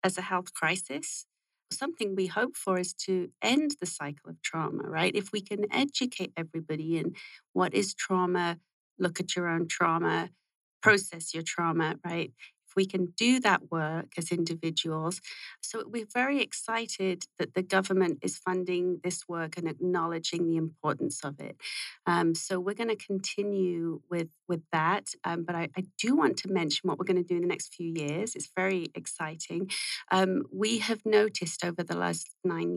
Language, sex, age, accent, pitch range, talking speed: English, female, 40-59, British, 165-200 Hz, 175 wpm